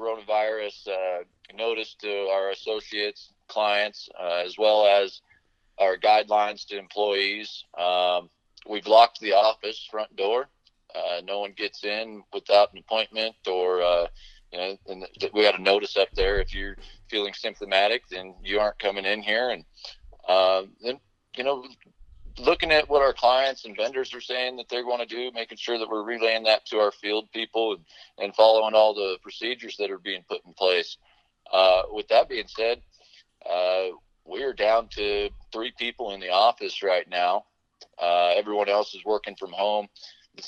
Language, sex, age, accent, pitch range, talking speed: English, male, 40-59, American, 95-115 Hz, 170 wpm